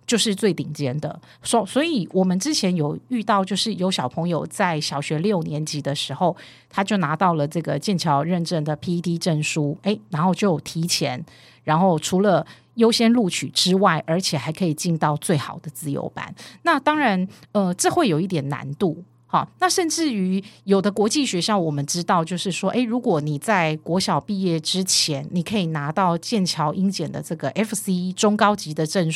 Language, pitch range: Chinese, 155-195 Hz